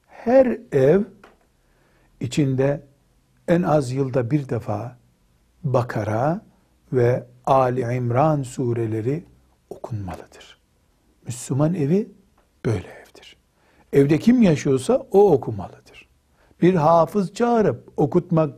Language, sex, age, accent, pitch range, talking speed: Turkish, male, 60-79, native, 115-170 Hz, 85 wpm